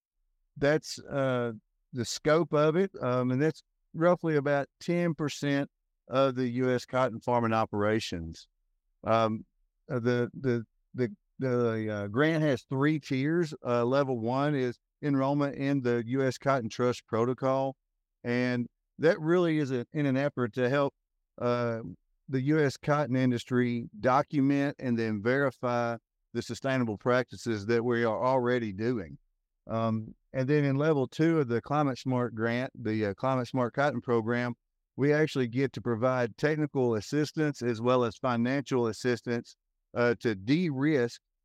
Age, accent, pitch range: 50-69, American, 115-140 Hz